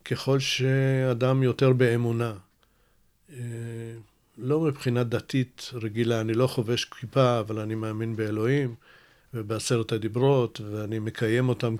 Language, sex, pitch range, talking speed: Hebrew, male, 115-130 Hz, 105 wpm